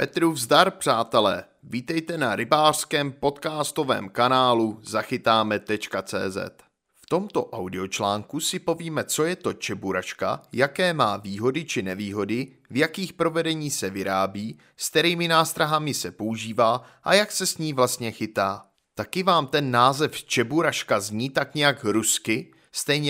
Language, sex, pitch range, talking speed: Czech, male, 120-160 Hz, 130 wpm